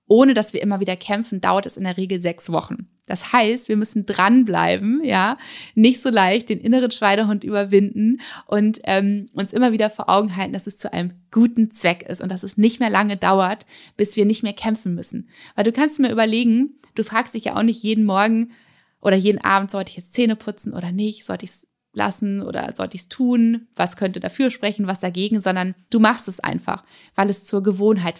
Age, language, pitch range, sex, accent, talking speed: 20-39, German, 190-225 Hz, female, German, 215 wpm